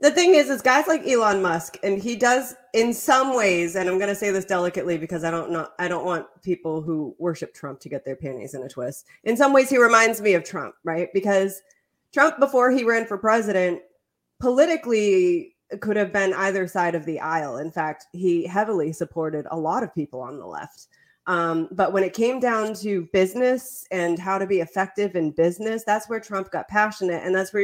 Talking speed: 215 wpm